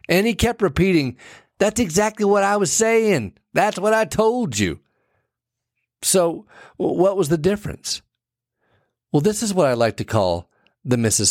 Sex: male